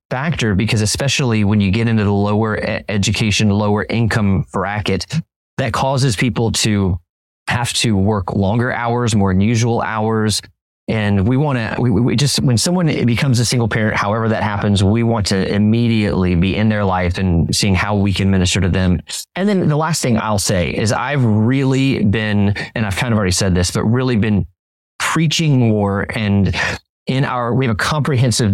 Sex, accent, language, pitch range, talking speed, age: male, American, English, 100-120 Hz, 180 wpm, 30-49